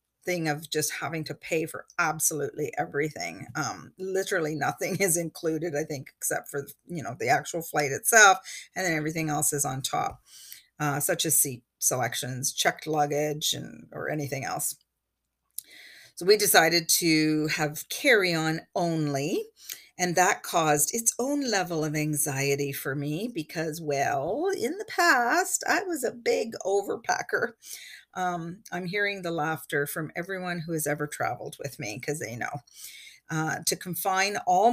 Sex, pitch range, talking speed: female, 155-205 Hz, 155 wpm